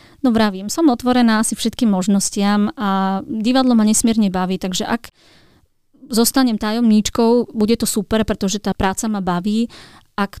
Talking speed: 145 wpm